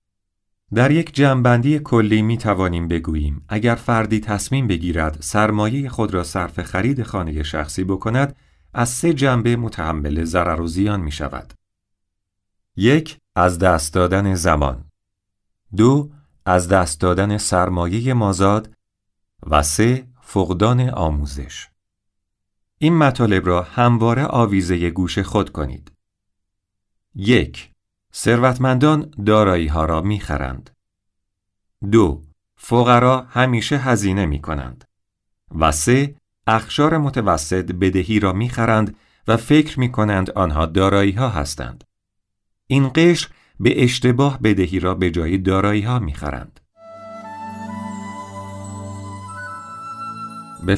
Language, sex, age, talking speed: Persian, male, 40-59, 105 wpm